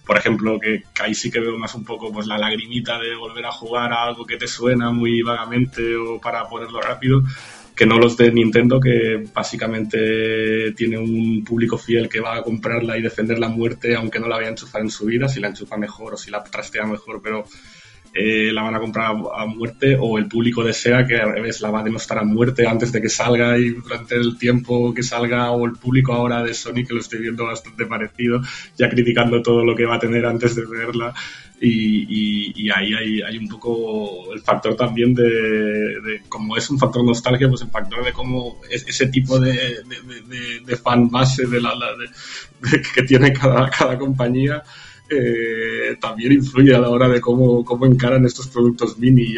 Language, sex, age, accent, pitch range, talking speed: Spanish, male, 20-39, Spanish, 110-120 Hz, 210 wpm